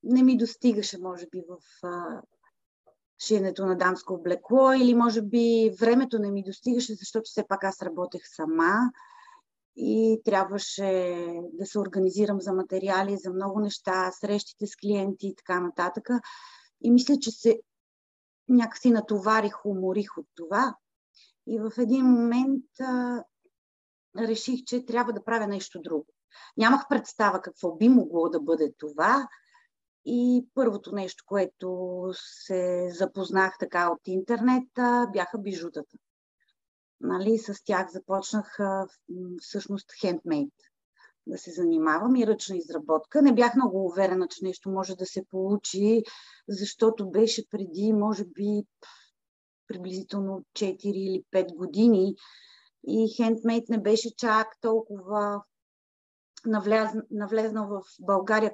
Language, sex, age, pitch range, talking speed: Bulgarian, female, 30-49, 185-235 Hz, 125 wpm